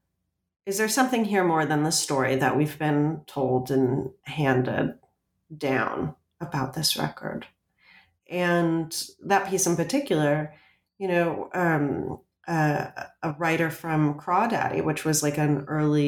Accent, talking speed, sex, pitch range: American, 135 wpm, female, 140-180 Hz